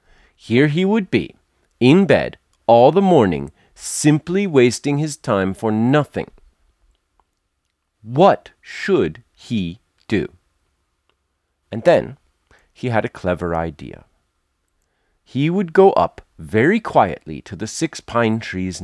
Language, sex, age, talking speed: English, male, 40-59, 120 wpm